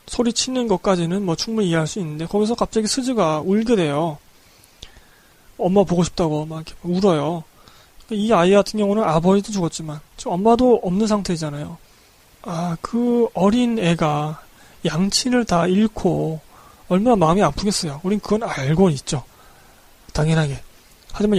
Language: Korean